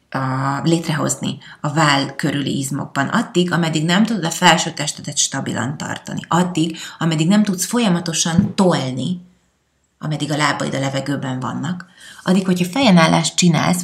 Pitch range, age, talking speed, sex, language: 150-180 Hz, 30-49, 135 wpm, female, Hungarian